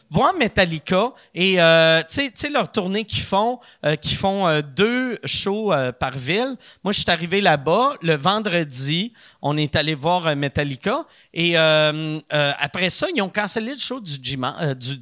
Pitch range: 150-215 Hz